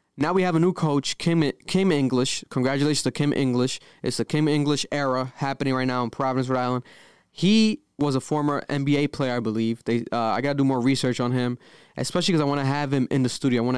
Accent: American